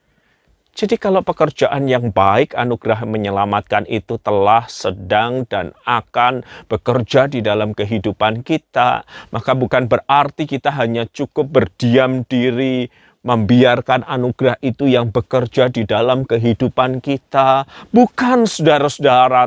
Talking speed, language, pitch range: 110 wpm, Malay, 110-150 Hz